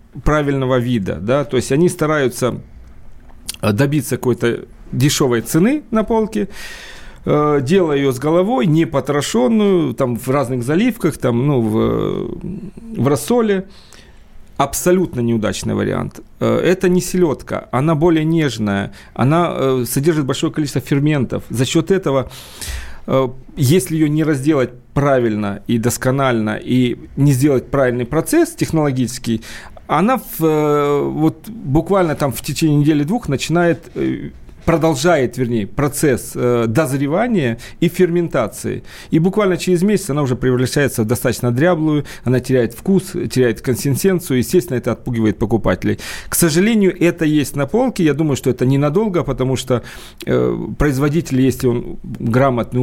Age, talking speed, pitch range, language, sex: 40-59, 125 wpm, 120-170 Hz, Russian, male